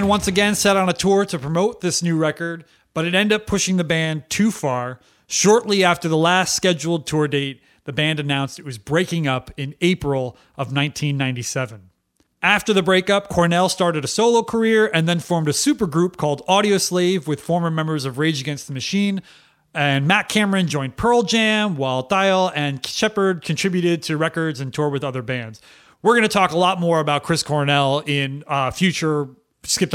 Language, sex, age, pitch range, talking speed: English, male, 30-49, 145-190 Hz, 190 wpm